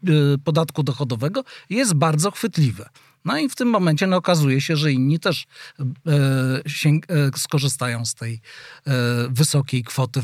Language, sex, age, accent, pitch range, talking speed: Polish, male, 40-59, native, 135-170 Hz, 145 wpm